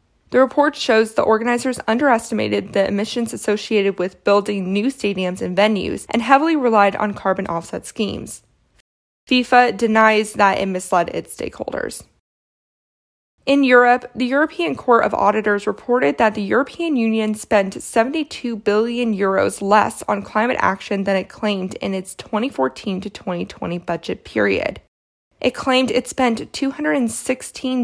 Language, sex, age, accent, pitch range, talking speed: English, female, 20-39, American, 195-245 Hz, 135 wpm